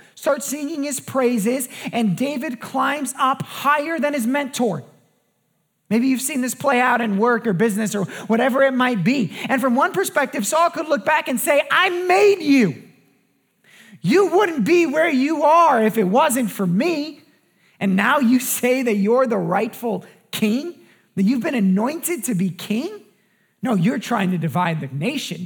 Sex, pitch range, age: male, 180-255 Hz, 30-49